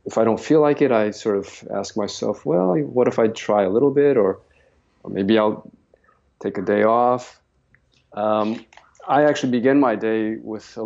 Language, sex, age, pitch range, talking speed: English, male, 50-69, 105-120 Hz, 195 wpm